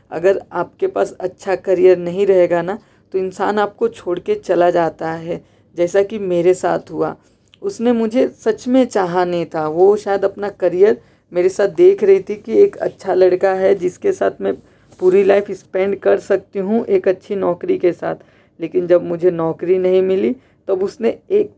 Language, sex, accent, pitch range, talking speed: Hindi, female, native, 175-200 Hz, 185 wpm